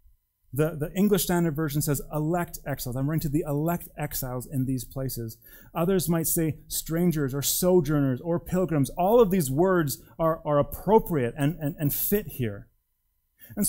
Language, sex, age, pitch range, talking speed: English, male, 30-49, 115-170 Hz, 165 wpm